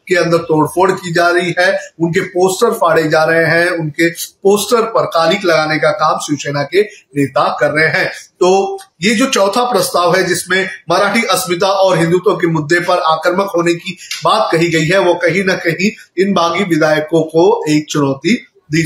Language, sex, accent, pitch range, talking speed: Hindi, male, native, 165-195 Hz, 185 wpm